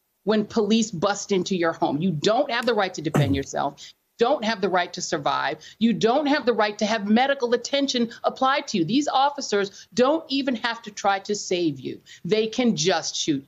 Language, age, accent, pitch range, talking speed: English, 40-59, American, 190-255 Hz, 205 wpm